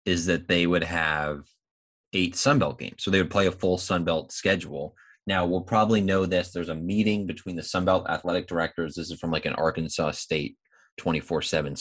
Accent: American